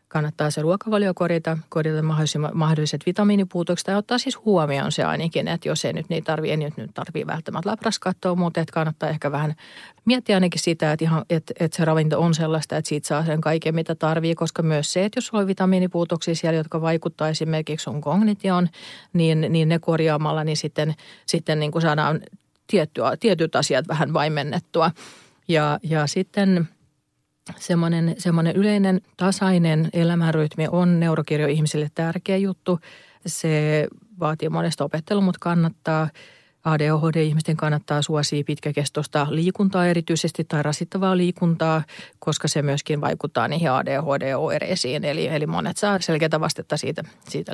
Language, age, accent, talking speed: Finnish, 40-59, native, 145 wpm